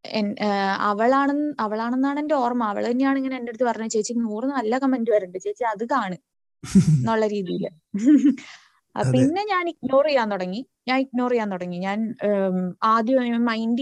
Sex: female